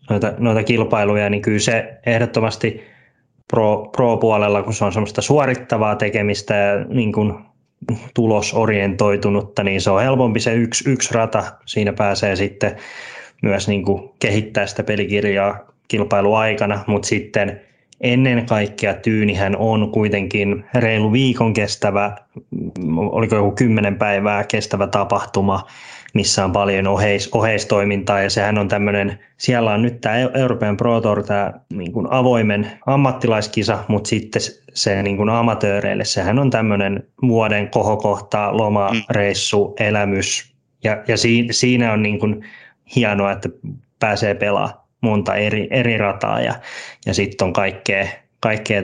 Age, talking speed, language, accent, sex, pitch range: 20-39, 120 wpm, Finnish, native, male, 100-115 Hz